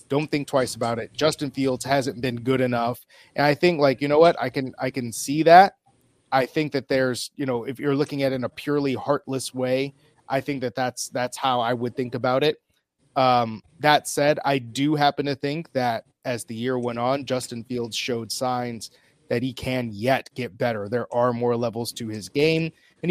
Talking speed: 215 wpm